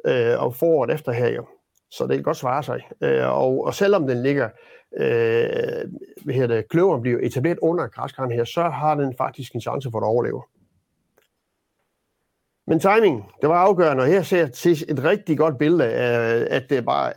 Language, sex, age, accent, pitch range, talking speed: Danish, male, 60-79, native, 125-185 Hz, 180 wpm